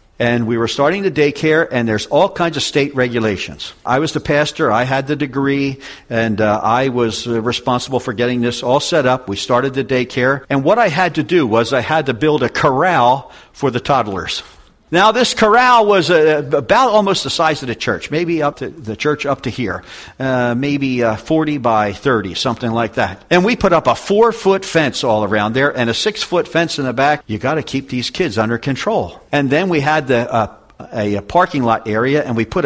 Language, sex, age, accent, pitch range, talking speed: English, male, 50-69, American, 120-170 Hz, 220 wpm